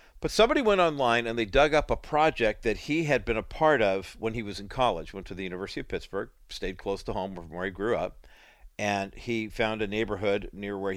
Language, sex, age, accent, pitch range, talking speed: English, male, 50-69, American, 100-135 Hz, 240 wpm